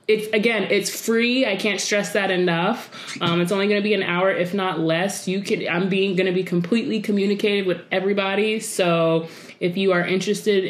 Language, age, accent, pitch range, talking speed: English, 20-39, American, 175-215 Hz, 200 wpm